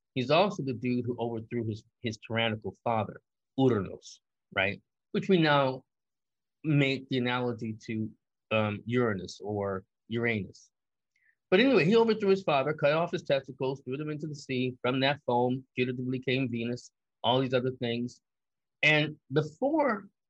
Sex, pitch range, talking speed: male, 120-150 Hz, 150 wpm